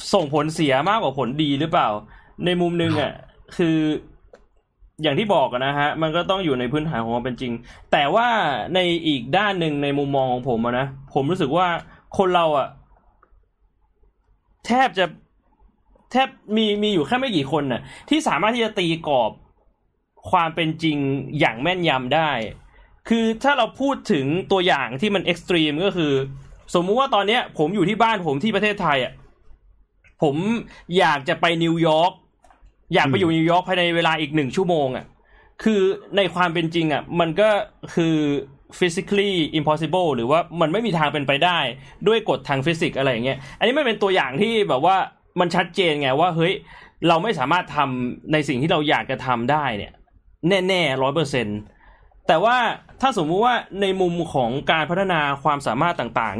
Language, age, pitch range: Thai, 20-39, 140-190 Hz